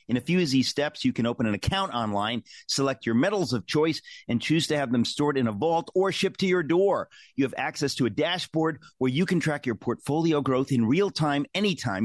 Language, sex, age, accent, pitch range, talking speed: English, male, 40-59, American, 125-165 Hz, 240 wpm